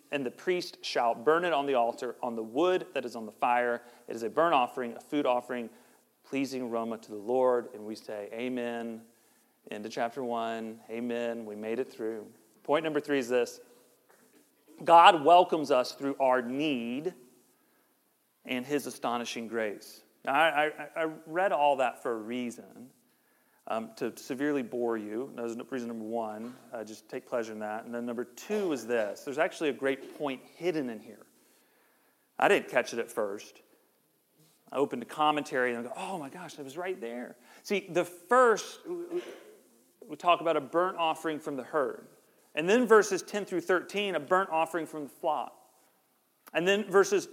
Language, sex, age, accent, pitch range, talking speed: English, male, 40-59, American, 120-175 Hz, 185 wpm